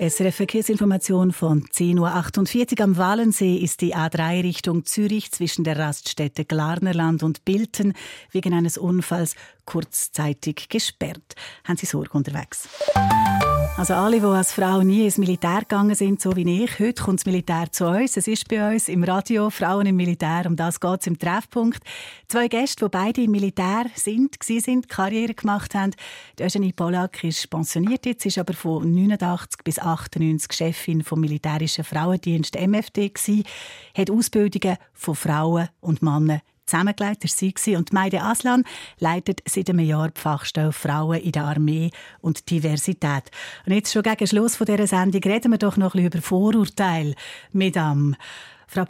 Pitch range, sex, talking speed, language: 165-205 Hz, female, 155 wpm, German